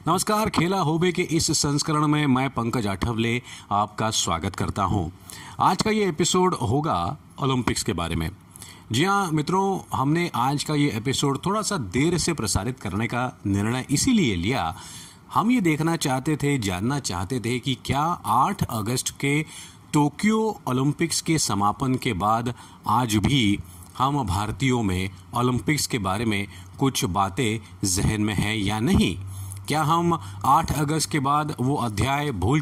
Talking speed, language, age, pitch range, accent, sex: 155 wpm, Hindi, 40-59, 110-160 Hz, native, male